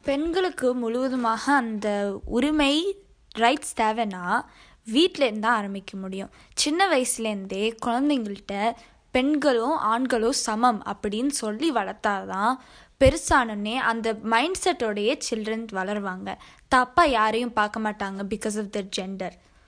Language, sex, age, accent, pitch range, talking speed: Tamil, female, 20-39, native, 220-280 Hz, 100 wpm